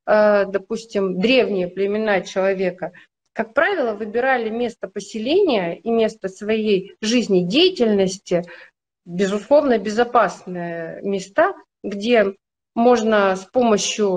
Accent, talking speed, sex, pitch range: native, 85 wpm, female, 205-290 Hz